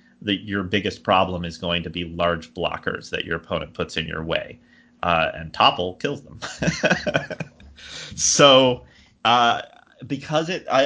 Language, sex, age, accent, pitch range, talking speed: English, male, 30-49, American, 85-105 Hz, 140 wpm